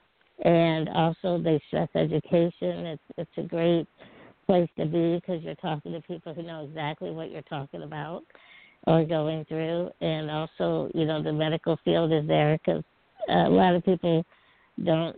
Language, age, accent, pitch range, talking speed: English, 60-79, American, 155-175 Hz, 165 wpm